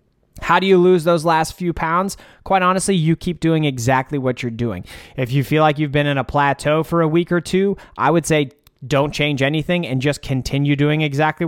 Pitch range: 130-155 Hz